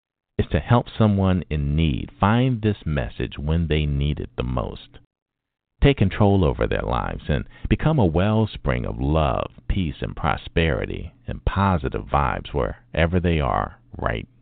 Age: 50-69